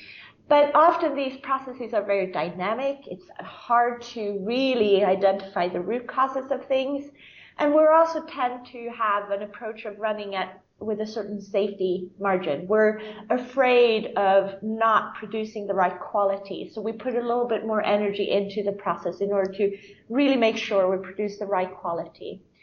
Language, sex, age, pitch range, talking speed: English, female, 30-49, 200-245 Hz, 165 wpm